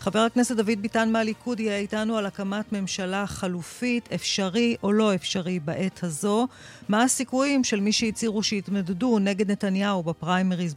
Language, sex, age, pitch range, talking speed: Hebrew, female, 40-59, 180-215 Hz, 145 wpm